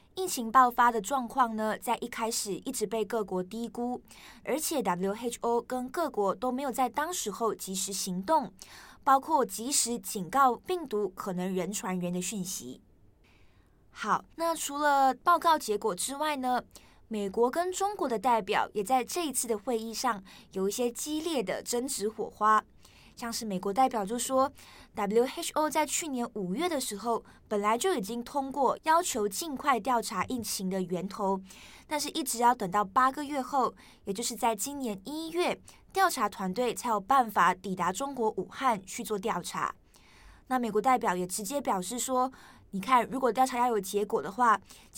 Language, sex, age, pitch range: Chinese, female, 20-39, 205-270 Hz